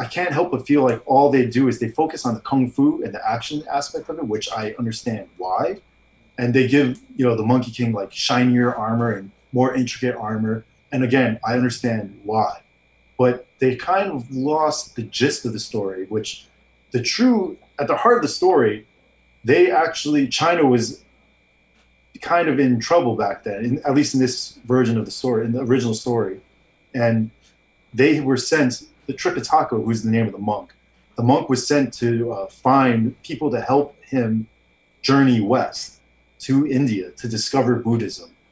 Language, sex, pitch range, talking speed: English, male, 110-135 Hz, 180 wpm